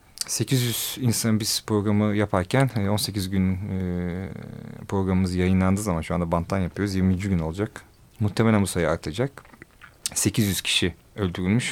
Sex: male